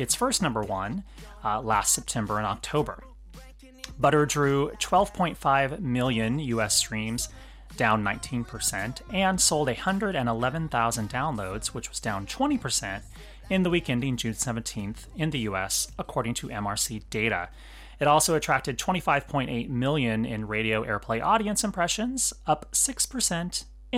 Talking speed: 125 wpm